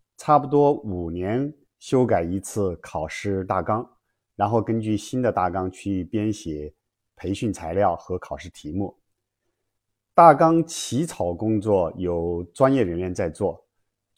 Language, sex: Chinese, male